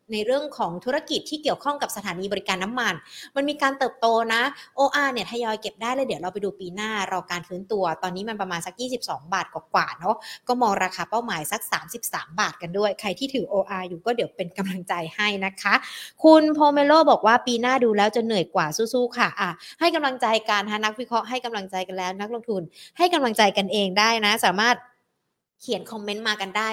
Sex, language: female, Thai